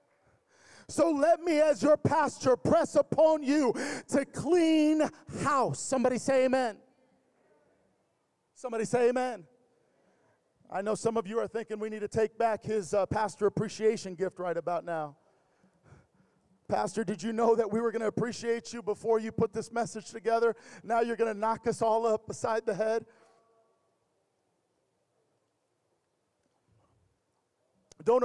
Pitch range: 220-265 Hz